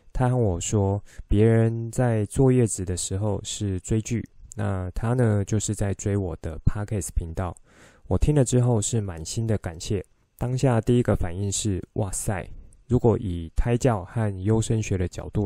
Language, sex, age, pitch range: Chinese, male, 20-39, 95-115 Hz